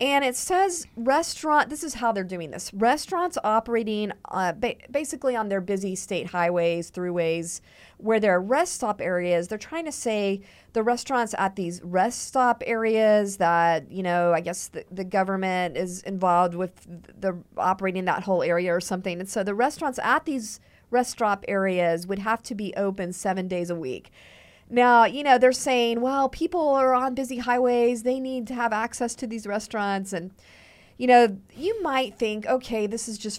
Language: English